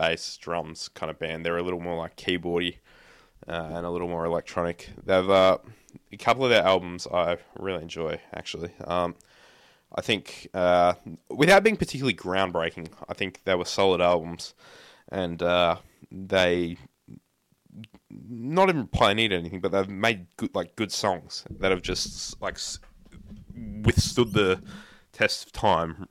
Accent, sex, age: Australian, male, 20-39